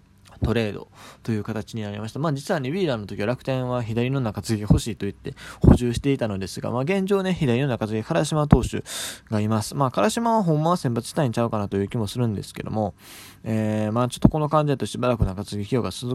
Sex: male